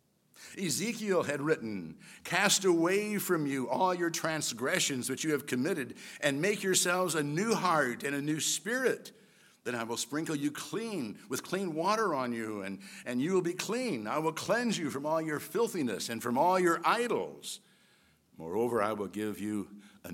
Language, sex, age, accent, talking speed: English, male, 60-79, American, 180 wpm